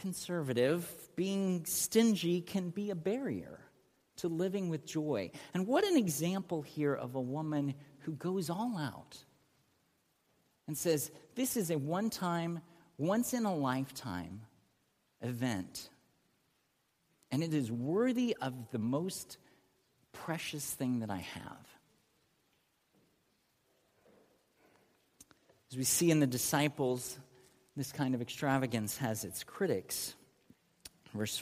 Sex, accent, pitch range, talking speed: male, American, 135-195 Hz, 110 wpm